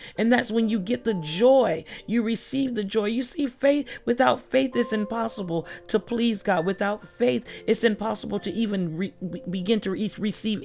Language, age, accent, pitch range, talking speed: English, 40-59, American, 165-210 Hz, 170 wpm